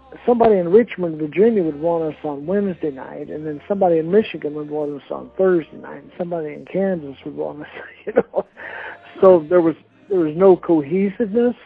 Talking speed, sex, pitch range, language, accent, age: 190 wpm, male, 160-200 Hz, English, American, 60-79